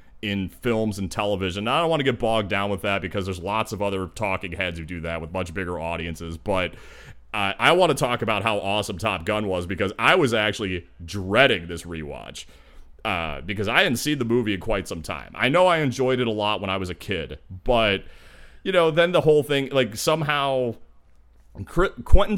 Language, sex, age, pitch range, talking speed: English, male, 30-49, 95-120 Hz, 215 wpm